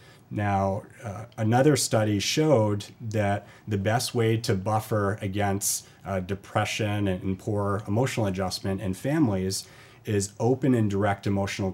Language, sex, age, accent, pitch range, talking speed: English, male, 30-49, American, 95-115 Hz, 135 wpm